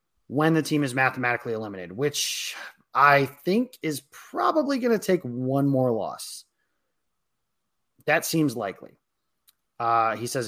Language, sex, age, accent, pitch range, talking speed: English, male, 30-49, American, 115-165 Hz, 130 wpm